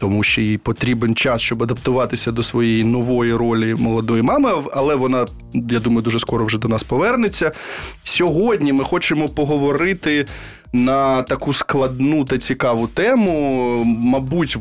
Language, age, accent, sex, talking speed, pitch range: Ukrainian, 20-39, native, male, 140 wpm, 120-140 Hz